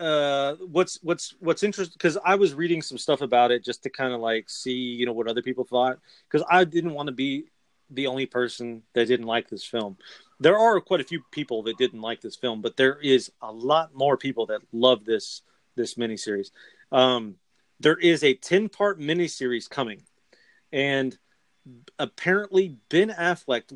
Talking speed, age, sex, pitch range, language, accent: 185 wpm, 30-49, male, 125-180 Hz, English, American